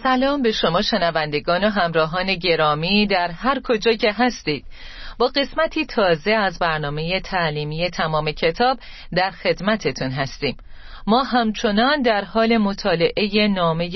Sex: female